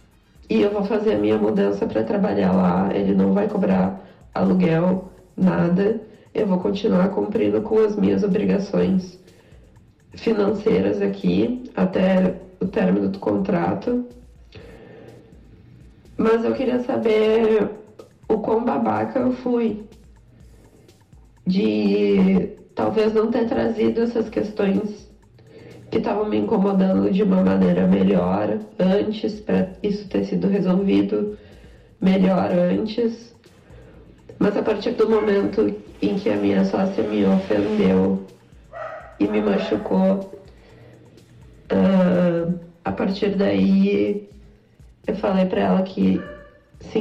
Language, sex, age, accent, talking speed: Portuguese, female, 20-39, Brazilian, 110 wpm